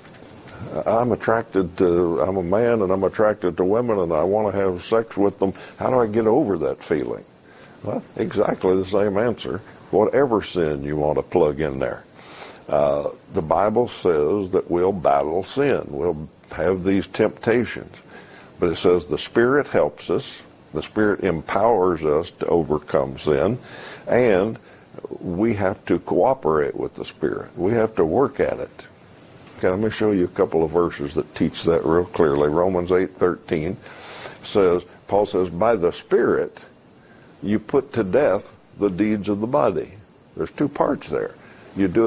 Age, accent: 60-79, American